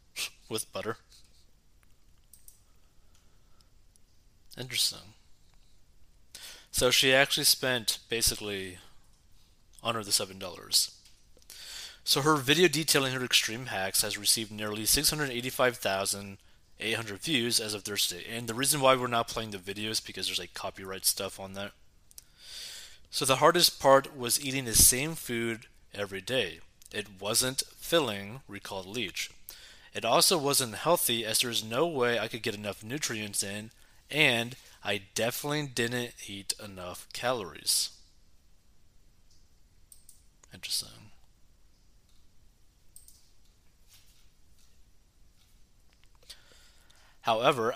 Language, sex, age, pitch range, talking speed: English, male, 20-39, 95-125 Hz, 105 wpm